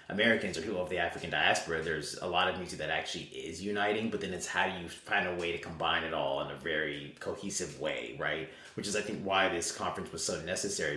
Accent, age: American, 30-49